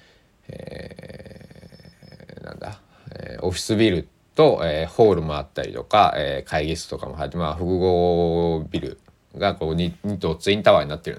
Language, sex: Japanese, male